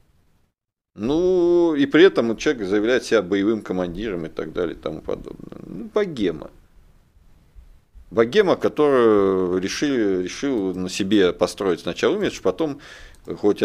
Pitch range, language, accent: 90-125 Hz, Russian, native